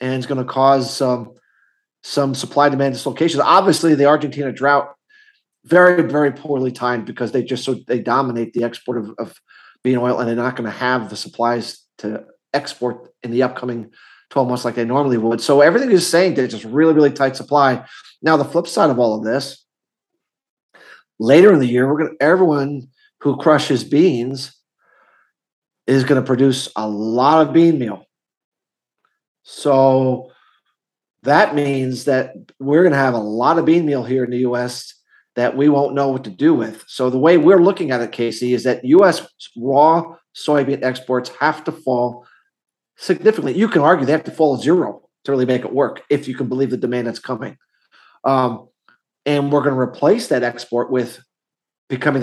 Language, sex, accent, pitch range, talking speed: English, male, American, 125-145 Hz, 185 wpm